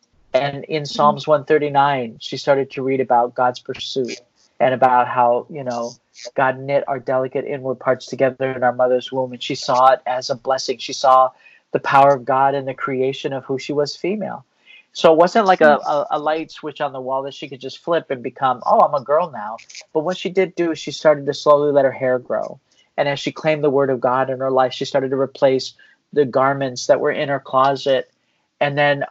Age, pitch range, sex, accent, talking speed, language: 40-59, 130-145 Hz, male, American, 225 wpm, English